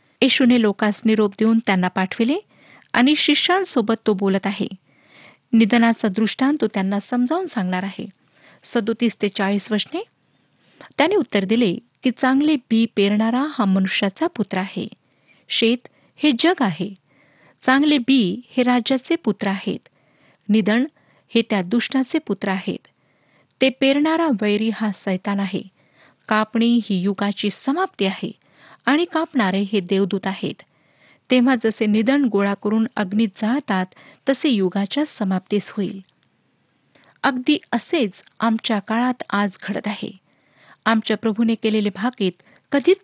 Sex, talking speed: female, 115 wpm